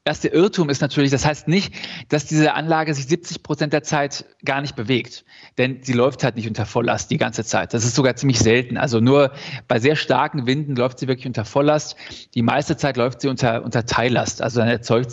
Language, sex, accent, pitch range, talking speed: German, male, German, 130-160 Hz, 225 wpm